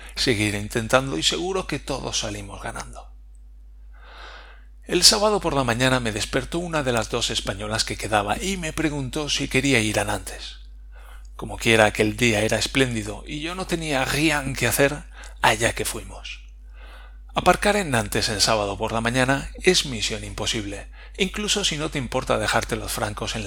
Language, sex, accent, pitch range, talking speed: Spanish, male, Spanish, 105-140 Hz, 170 wpm